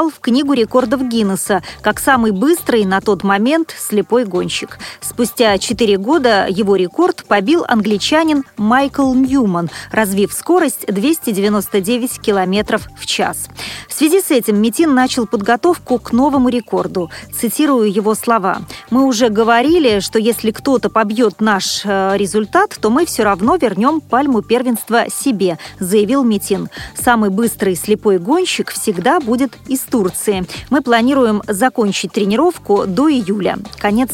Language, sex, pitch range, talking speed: Russian, female, 205-260 Hz, 130 wpm